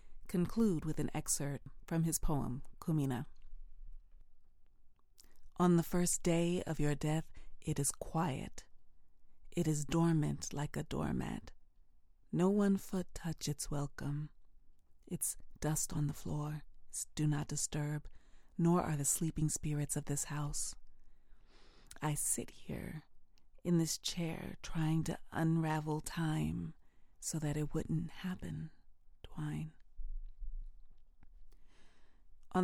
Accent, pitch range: American, 115-160 Hz